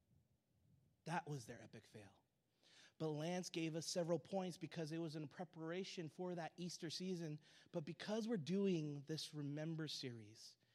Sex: male